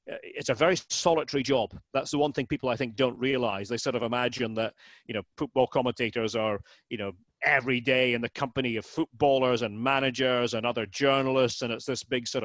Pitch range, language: 115-140 Hz, English